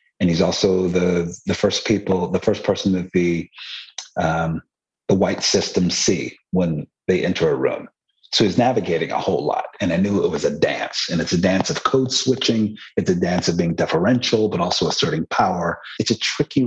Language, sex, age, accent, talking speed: English, male, 40-59, American, 195 wpm